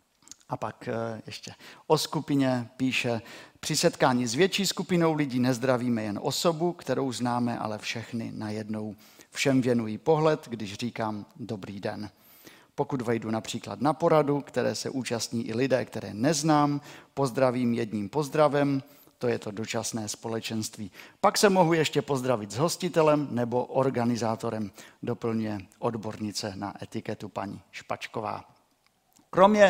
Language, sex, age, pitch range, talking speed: Czech, male, 50-69, 115-150 Hz, 130 wpm